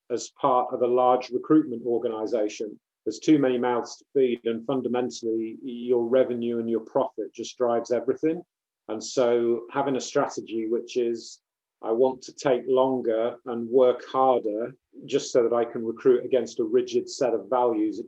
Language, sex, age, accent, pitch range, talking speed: English, male, 40-59, British, 115-130 Hz, 170 wpm